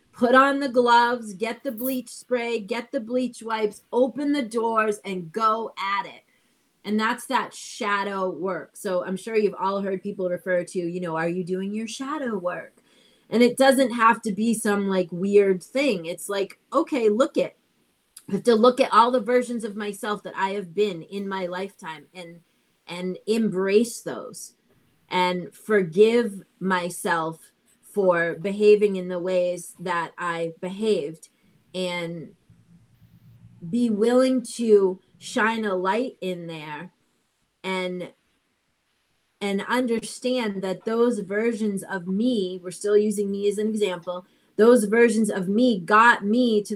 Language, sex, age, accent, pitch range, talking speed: English, female, 30-49, American, 185-235 Hz, 155 wpm